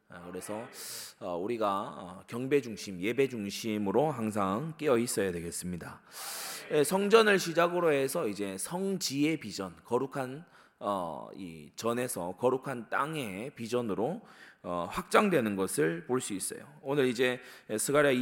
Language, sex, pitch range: Korean, male, 105-155 Hz